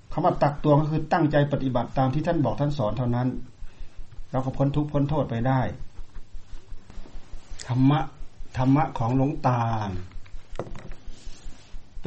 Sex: male